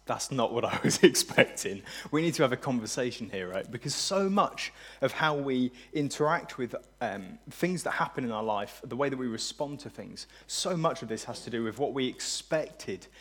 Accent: British